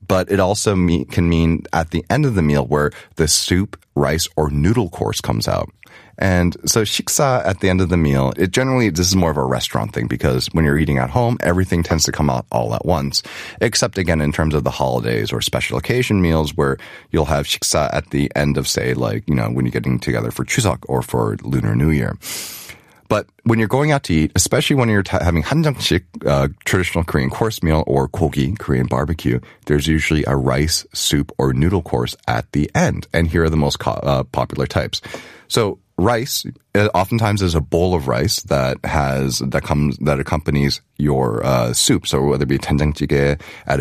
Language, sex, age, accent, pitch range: Korean, male, 30-49, American, 70-95 Hz